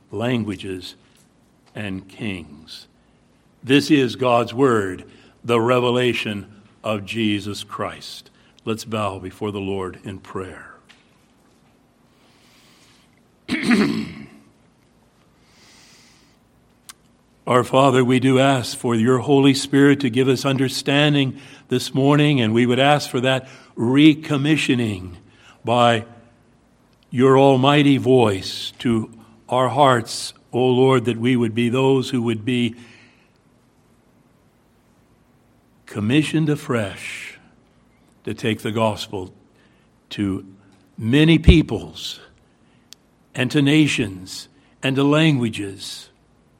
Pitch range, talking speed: 105-130 Hz, 95 wpm